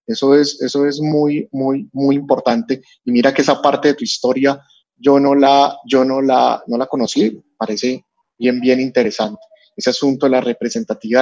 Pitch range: 125-145 Hz